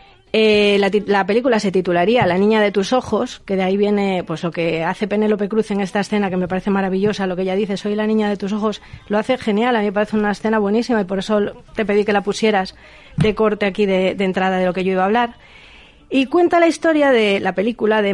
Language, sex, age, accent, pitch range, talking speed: Spanish, female, 30-49, Spanish, 190-240 Hz, 255 wpm